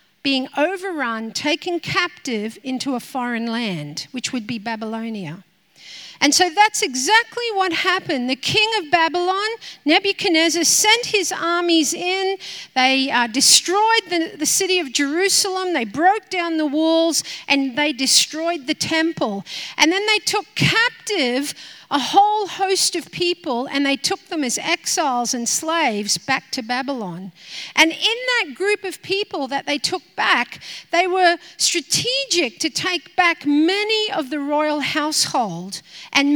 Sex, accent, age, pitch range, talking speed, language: female, Australian, 50-69, 260-375 Hz, 145 wpm, English